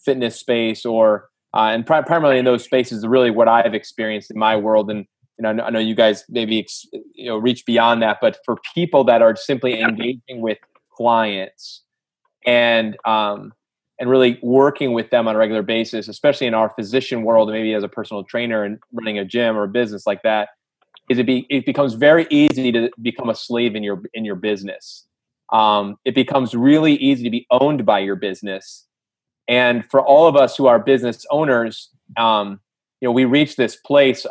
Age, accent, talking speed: 20-39, American, 195 wpm